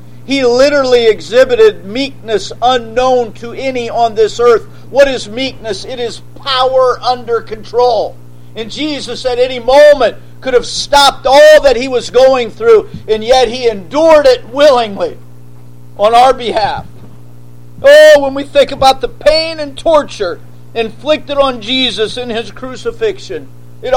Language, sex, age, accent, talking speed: English, male, 50-69, American, 145 wpm